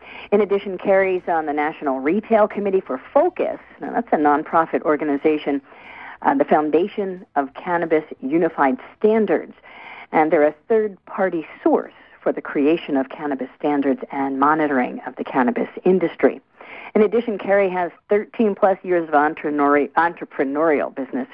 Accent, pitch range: American, 145-210 Hz